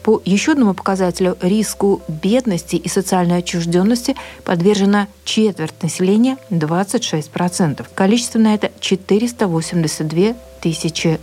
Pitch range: 185-230 Hz